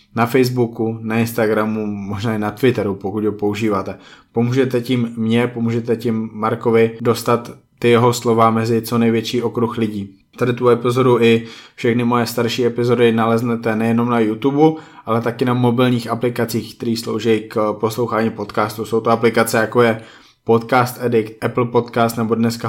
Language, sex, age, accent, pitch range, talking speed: Czech, male, 20-39, native, 115-120 Hz, 155 wpm